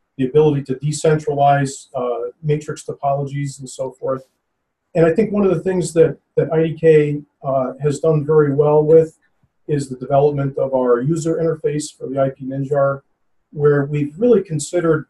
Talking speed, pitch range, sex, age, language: 165 wpm, 135-165 Hz, male, 40-59, English